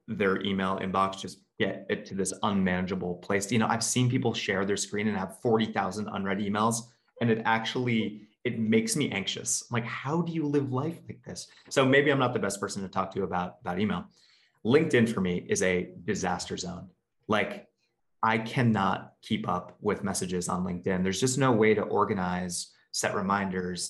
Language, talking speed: English, 190 wpm